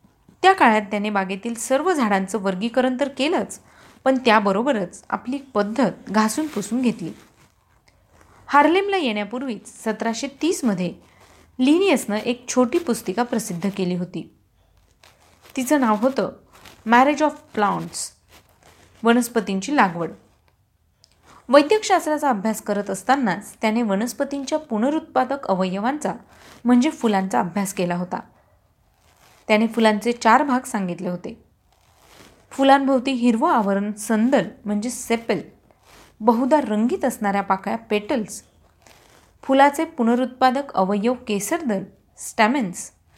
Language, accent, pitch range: Marathi, native, 195-265 Hz